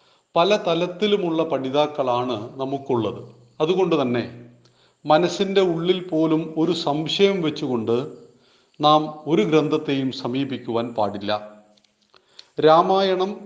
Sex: male